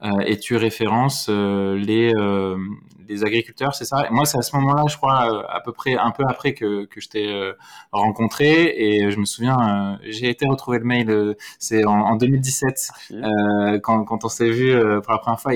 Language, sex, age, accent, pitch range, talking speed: French, male, 20-39, French, 105-135 Hz, 220 wpm